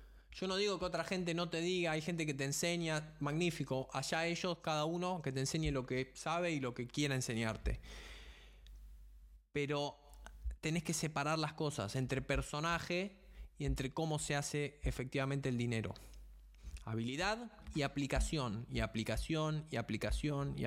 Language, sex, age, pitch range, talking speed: Spanish, male, 20-39, 130-170 Hz, 155 wpm